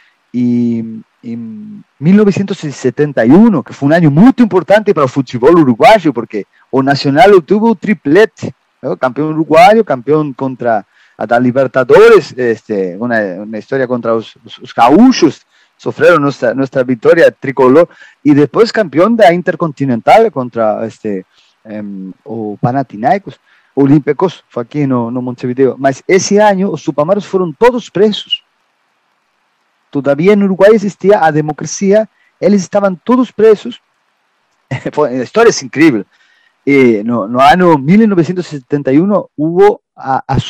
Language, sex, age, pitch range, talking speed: Portuguese, male, 40-59, 130-195 Hz, 125 wpm